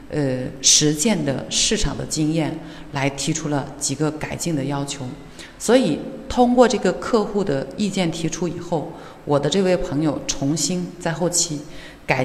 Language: Chinese